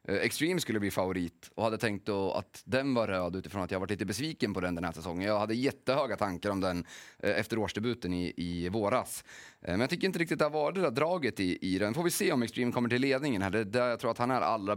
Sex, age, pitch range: male, 30-49, 95-125 Hz